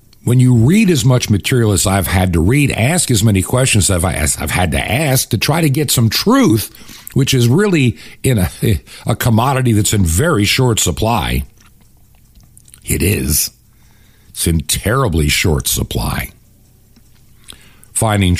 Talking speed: 150 wpm